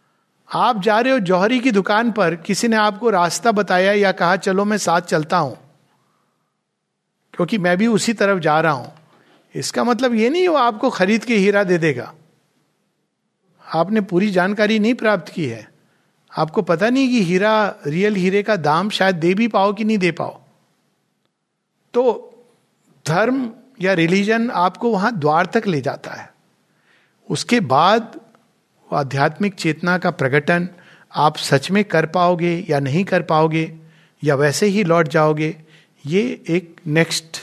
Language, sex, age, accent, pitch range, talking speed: Hindi, male, 50-69, native, 160-215 Hz, 155 wpm